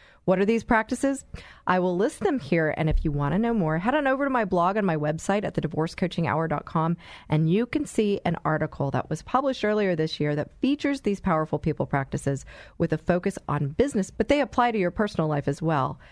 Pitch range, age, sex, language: 155-210 Hz, 30-49, female, English